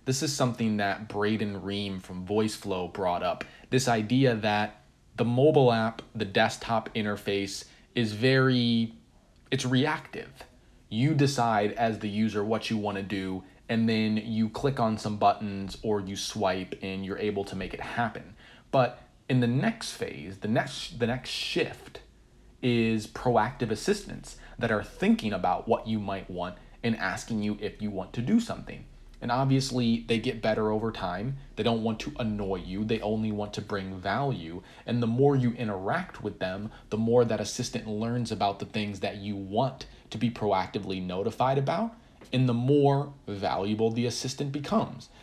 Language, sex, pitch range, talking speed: English, male, 100-125 Hz, 170 wpm